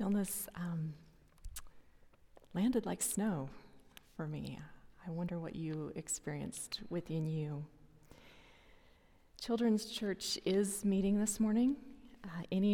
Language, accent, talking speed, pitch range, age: English, American, 105 wpm, 165-210 Hz, 30-49